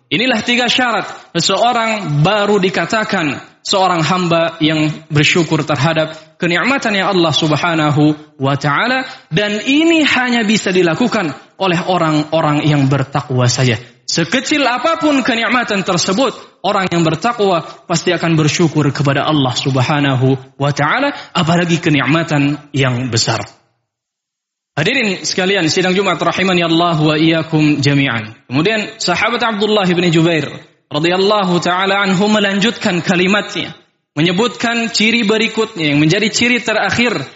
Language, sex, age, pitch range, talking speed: Indonesian, male, 20-39, 150-210 Hz, 110 wpm